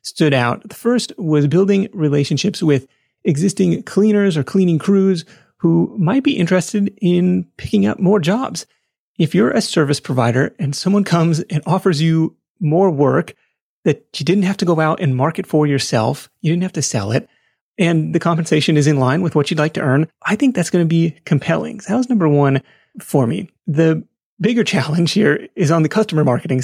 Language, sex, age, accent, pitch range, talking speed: English, male, 30-49, American, 150-195 Hz, 195 wpm